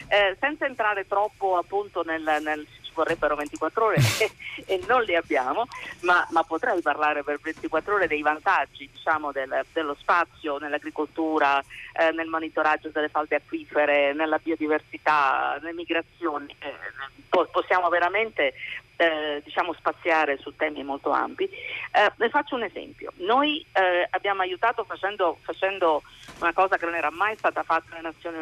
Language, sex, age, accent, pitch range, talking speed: Italian, female, 40-59, native, 155-205 Hz, 150 wpm